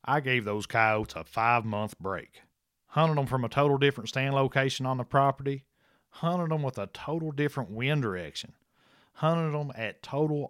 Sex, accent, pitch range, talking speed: male, American, 105-135 Hz, 175 wpm